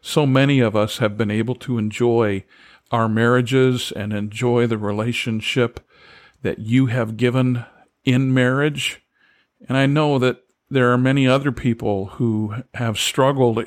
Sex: male